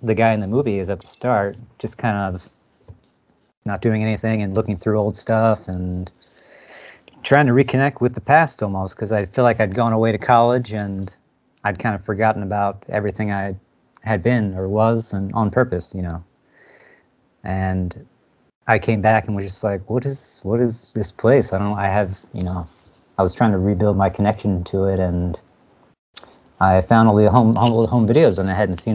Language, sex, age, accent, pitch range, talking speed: English, male, 40-59, American, 95-115 Hz, 200 wpm